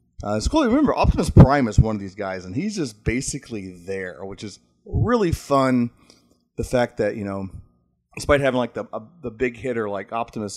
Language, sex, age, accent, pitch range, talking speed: English, male, 30-49, American, 95-120 Hz, 195 wpm